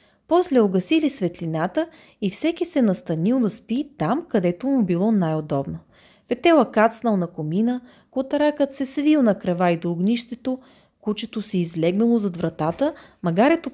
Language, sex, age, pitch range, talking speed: Bulgarian, female, 20-39, 180-250 Hz, 140 wpm